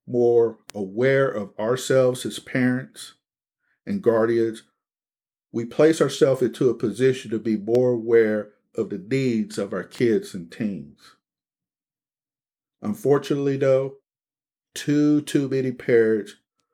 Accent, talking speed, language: American, 115 wpm, English